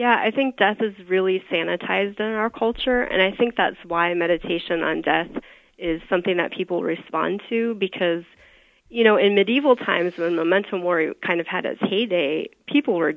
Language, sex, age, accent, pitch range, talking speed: English, female, 30-49, American, 185-235 Hz, 185 wpm